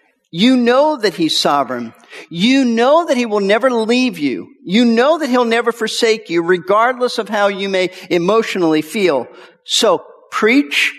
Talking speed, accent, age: 160 wpm, American, 50-69